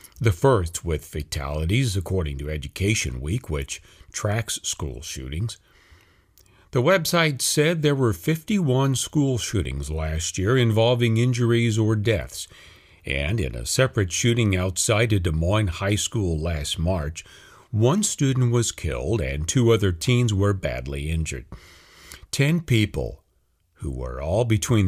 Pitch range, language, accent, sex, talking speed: 80-120 Hz, English, American, male, 135 wpm